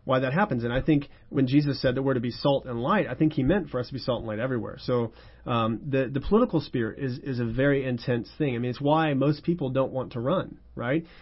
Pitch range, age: 120-150 Hz, 40-59